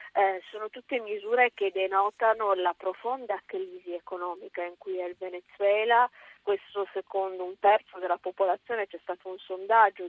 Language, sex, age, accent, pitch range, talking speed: Italian, female, 30-49, native, 180-205 Hz, 150 wpm